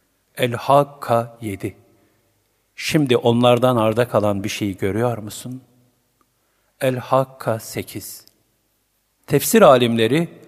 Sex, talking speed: male, 90 wpm